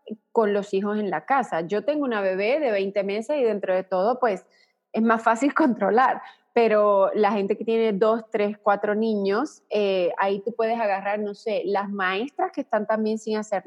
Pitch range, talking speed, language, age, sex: 200-235 Hz, 200 wpm, English, 20-39, female